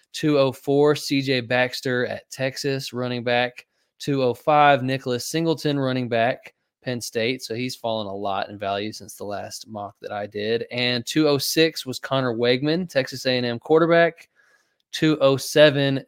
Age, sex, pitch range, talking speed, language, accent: 20-39, male, 110-140 Hz, 140 wpm, English, American